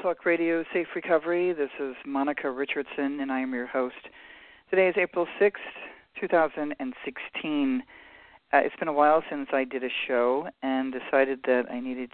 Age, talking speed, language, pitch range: 40-59, 180 wpm, English, 120-160 Hz